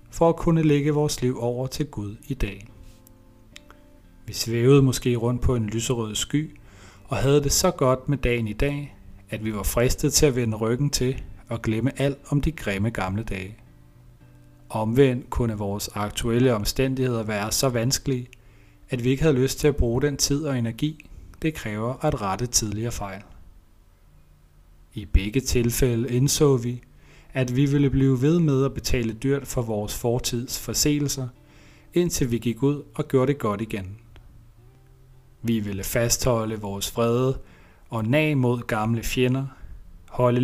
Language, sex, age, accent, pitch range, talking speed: Danish, male, 30-49, native, 110-135 Hz, 160 wpm